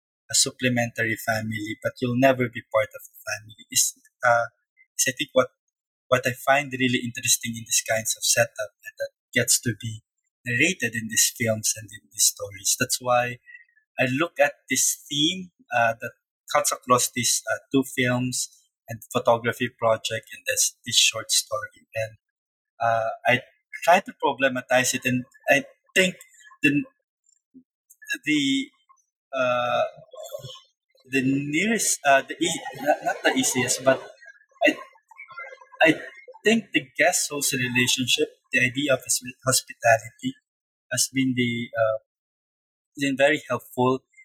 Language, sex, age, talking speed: English, male, 20-39, 140 wpm